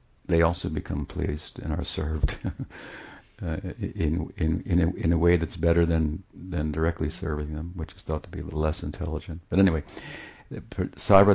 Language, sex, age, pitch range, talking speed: English, male, 60-79, 80-95 Hz, 175 wpm